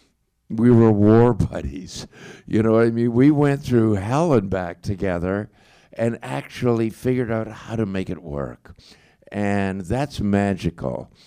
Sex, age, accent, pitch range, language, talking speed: male, 60-79, American, 90-115 Hz, English, 145 wpm